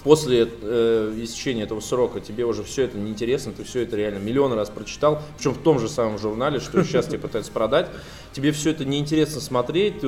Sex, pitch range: male, 105-135 Hz